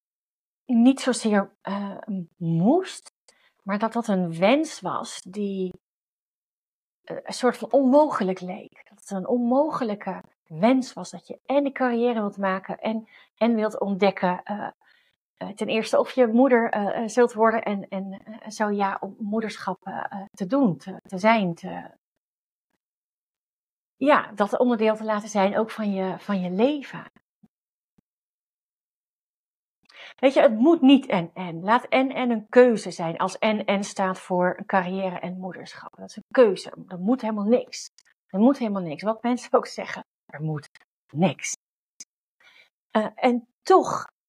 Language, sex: Dutch, female